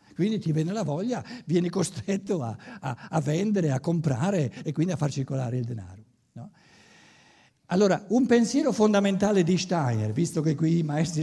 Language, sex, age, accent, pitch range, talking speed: Italian, male, 60-79, native, 140-210 Hz, 160 wpm